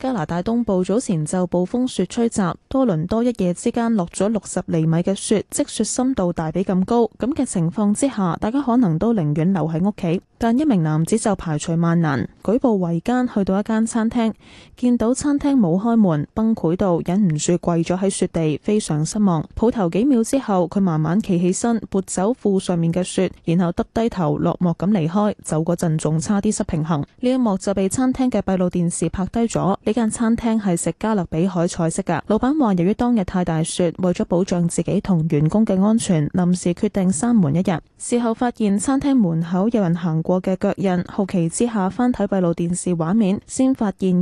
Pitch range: 175-225 Hz